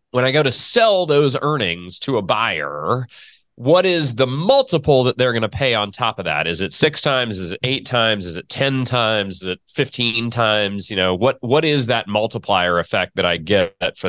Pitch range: 100-140 Hz